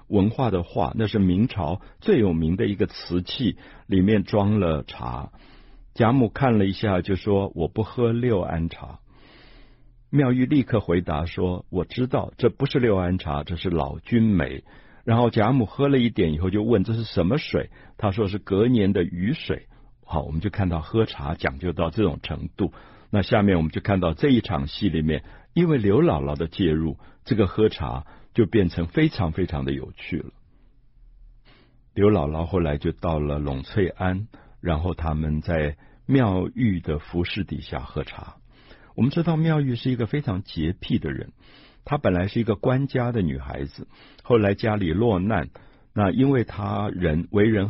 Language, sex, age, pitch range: Chinese, male, 60-79, 85-115 Hz